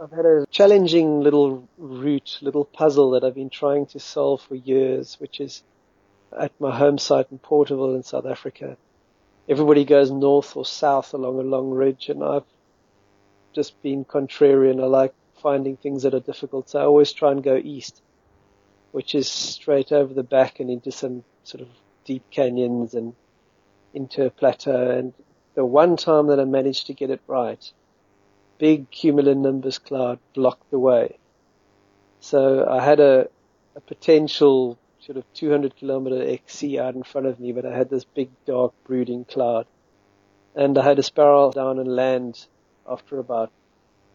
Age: 40-59